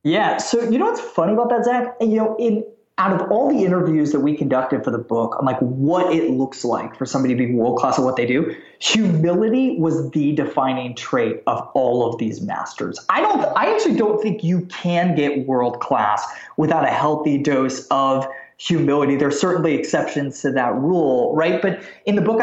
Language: English